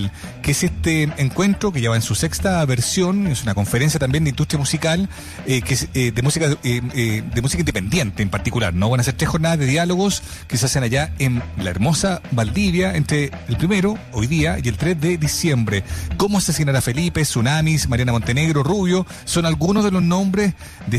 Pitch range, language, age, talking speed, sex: 120-165 Hz, Spanish, 40-59, 205 wpm, male